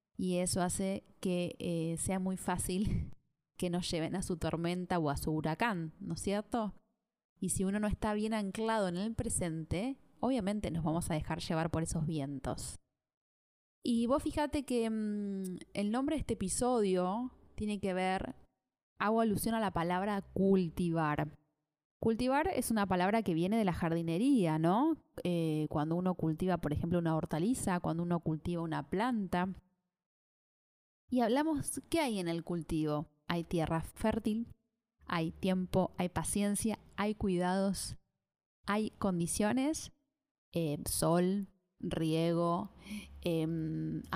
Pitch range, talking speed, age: 165-215 Hz, 140 wpm, 20-39